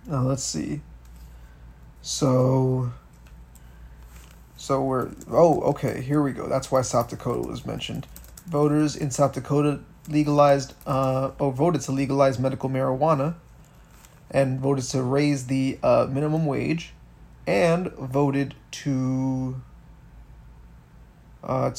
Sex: male